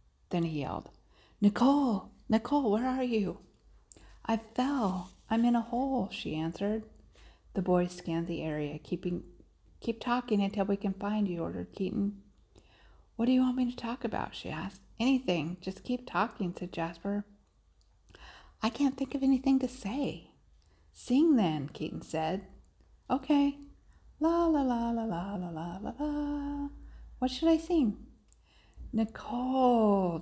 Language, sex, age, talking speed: English, female, 50-69, 145 wpm